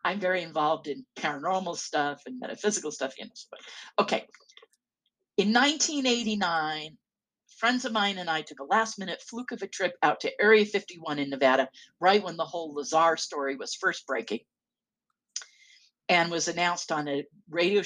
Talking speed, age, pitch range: 160 wpm, 50-69, 150-210 Hz